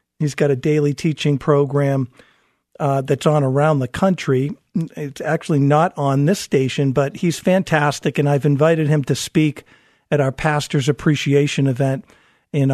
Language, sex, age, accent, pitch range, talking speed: English, male, 50-69, American, 135-150 Hz, 155 wpm